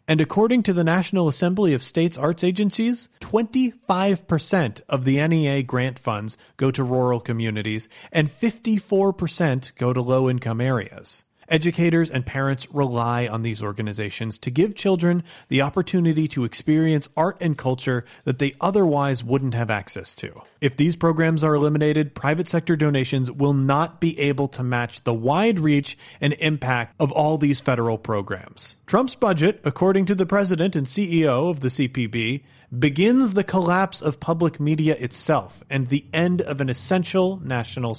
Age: 30-49